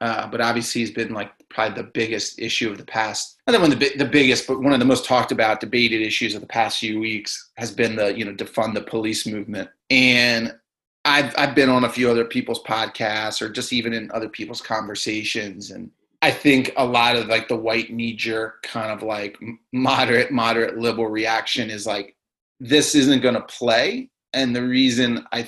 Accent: American